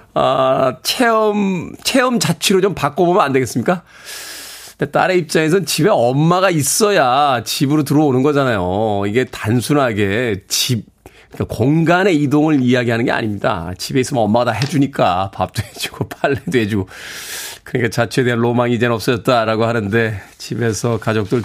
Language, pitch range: Korean, 120-175 Hz